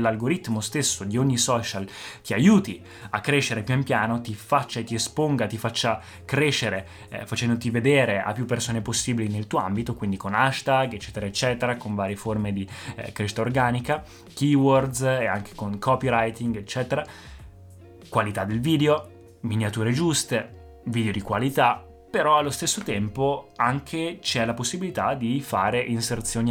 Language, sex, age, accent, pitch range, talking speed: Italian, male, 20-39, native, 105-130 Hz, 150 wpm